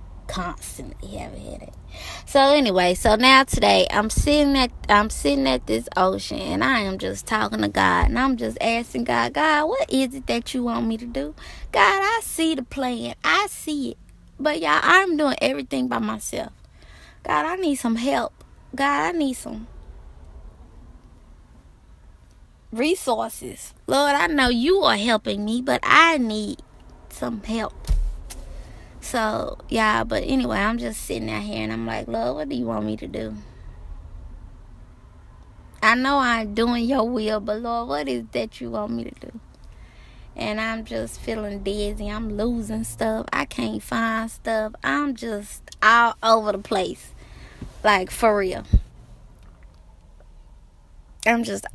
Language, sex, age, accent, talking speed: English, female, 20-39, American, 155 wpm